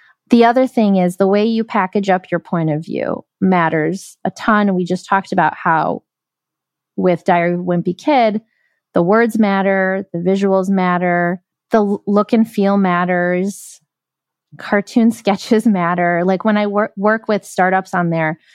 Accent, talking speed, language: American, 160 wpm, English